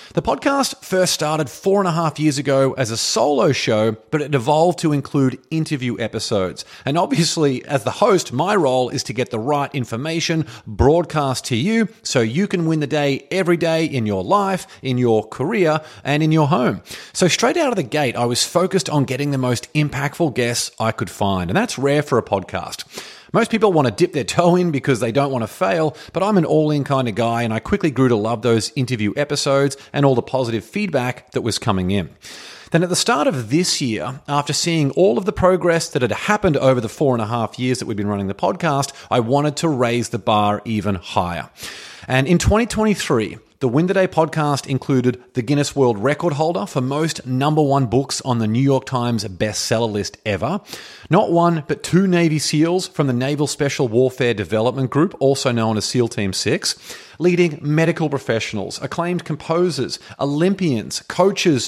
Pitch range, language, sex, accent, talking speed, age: 120-165 Hz, English, male, Australian, 200 wpm, 30-49